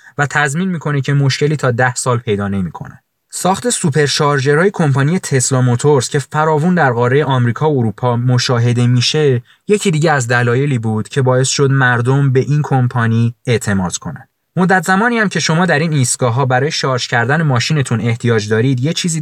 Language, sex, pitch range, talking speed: Persian, male, 125-155 Hz, 165 wpm